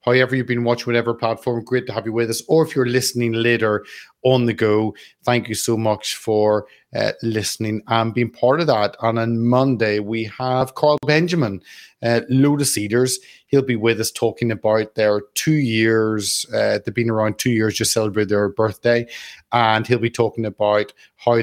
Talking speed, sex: 190 wpm, male